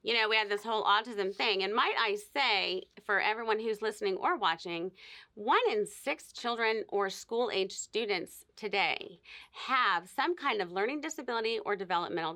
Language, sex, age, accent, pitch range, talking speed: English, female, 30-49, American, 190-265 Hz, 165 wpm